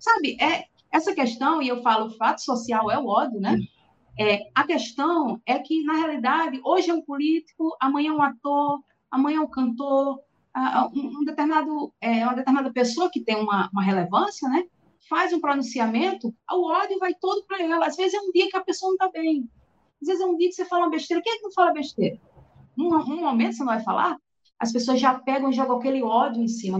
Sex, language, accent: female, Portuguese, Brazilian